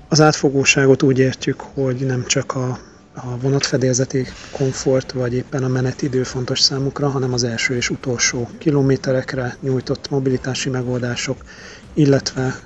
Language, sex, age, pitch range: Hungarian, male, 40-59, 125-135 Hz